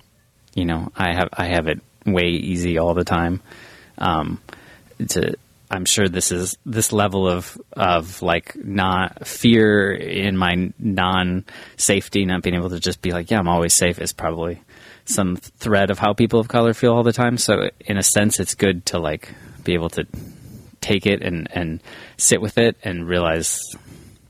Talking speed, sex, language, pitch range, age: 180 wpm, male, English, 90-110 Hz, 20-39